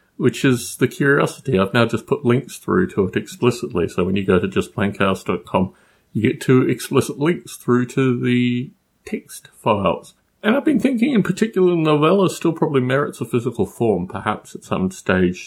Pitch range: 105-160 Hz